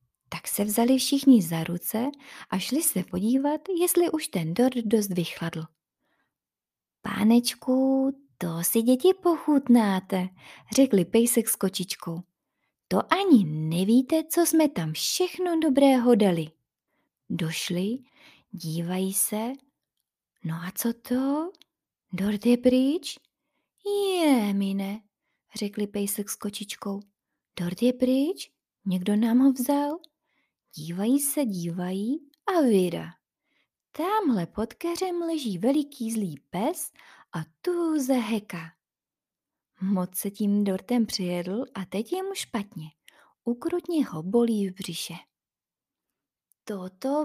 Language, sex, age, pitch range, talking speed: Czech, female, 30-49, 195-275 Hz, 115 wpm